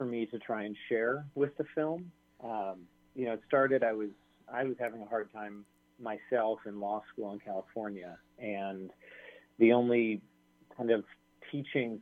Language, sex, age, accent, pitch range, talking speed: English, male, 30-49, American, 95-115 Hz, 170 wpm